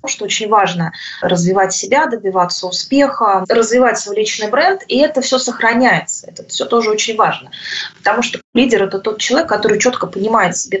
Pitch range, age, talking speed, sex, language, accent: 200-265 Hz, 20-39, 170 wpm, female, Russian, native